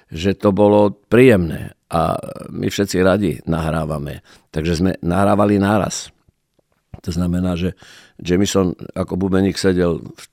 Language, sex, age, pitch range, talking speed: Slovak, male, 50-69, 85-105 Hz, 120 wpm